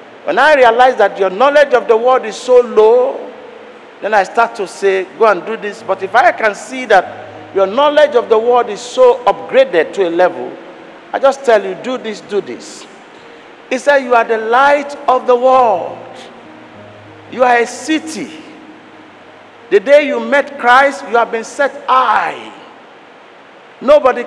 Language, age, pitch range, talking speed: English, 50-69, 215-285 Hz, 175 wpm